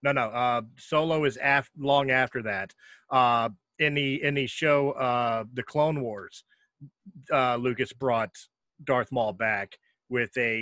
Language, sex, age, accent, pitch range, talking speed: English, male, 30-49, American, 115-140 Hz, 155 wpm